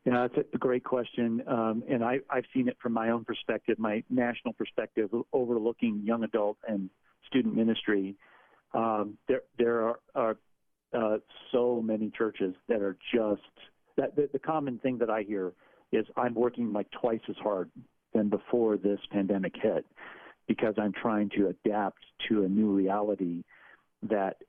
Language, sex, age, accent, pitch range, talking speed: English, male, 50-69, American, 105-125 Hz, 165 wpm